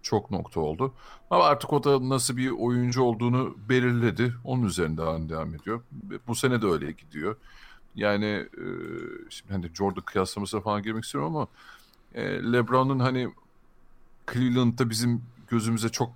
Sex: male